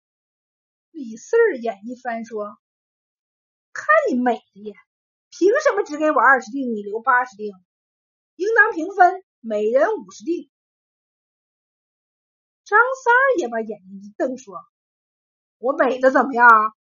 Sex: female